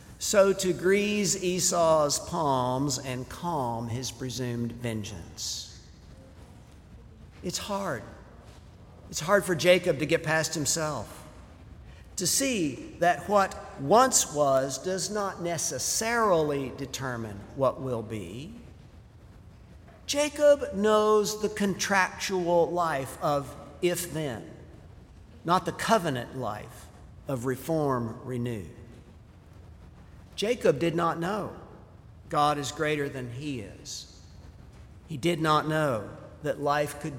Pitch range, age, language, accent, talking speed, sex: 115-175 Hz, 50-69, English, American, 105 wpm, male